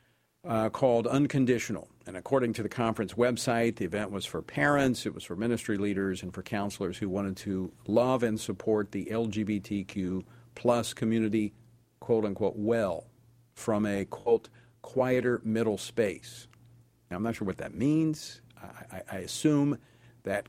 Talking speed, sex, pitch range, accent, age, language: 150 wpm, male, 105-125 Hz, American, 50-69, English